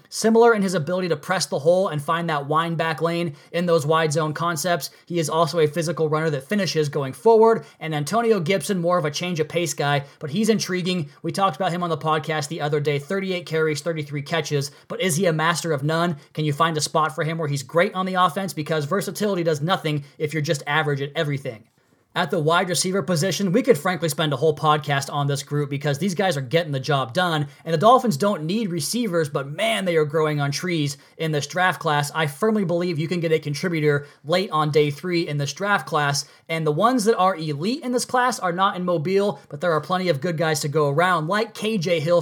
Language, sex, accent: English, male, American